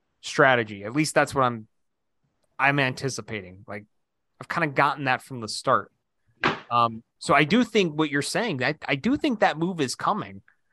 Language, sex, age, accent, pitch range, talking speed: English, male, 30-49, American, 120-150 Hz, 185 wpm